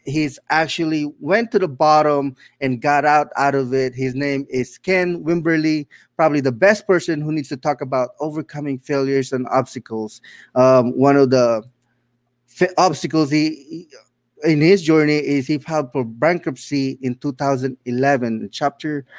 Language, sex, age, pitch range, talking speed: English, male, 20-39, 135-165 Hz, 155 wpm